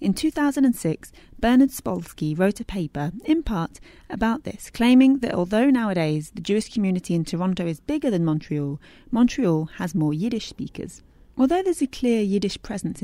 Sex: female